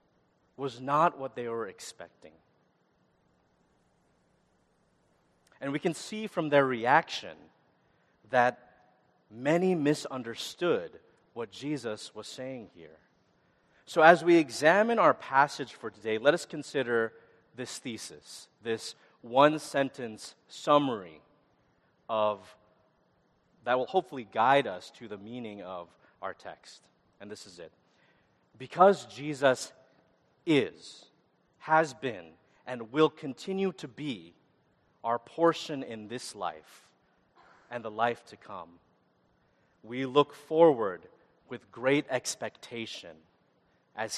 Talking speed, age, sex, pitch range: 110 wpm, 30-49, male, 115-150 Hz